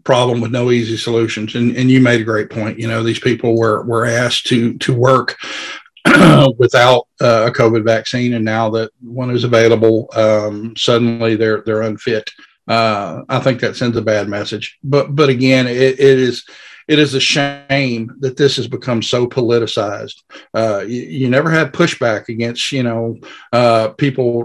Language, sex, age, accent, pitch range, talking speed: English, male, 50-69, American, 115-135 Hz, 180 wpm